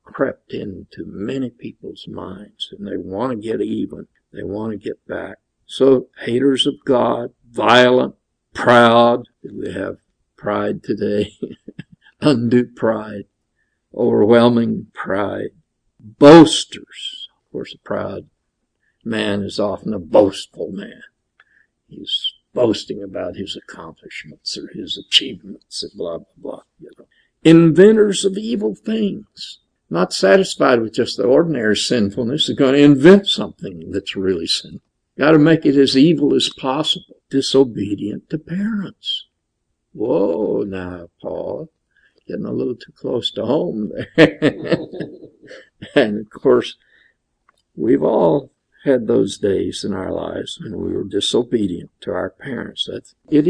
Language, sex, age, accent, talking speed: English, male, 60-79, American, 125 wpm